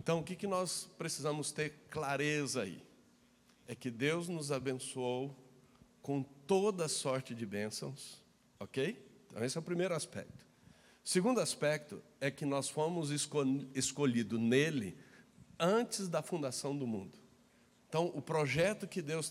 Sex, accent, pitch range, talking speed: male, Brazilian, 130-170 Hz, 135 wpm